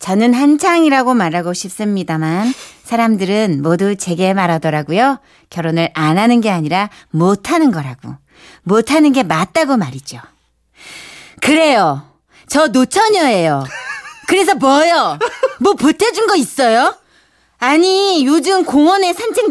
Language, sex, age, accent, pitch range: Korean, female, 40-59, native, 235-390 Hz